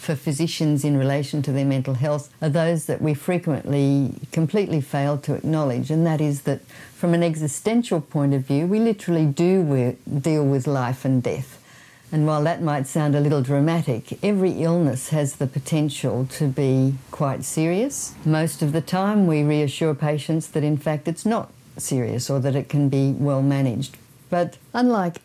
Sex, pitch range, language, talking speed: female, 135-160 Hz, English, 175 wpm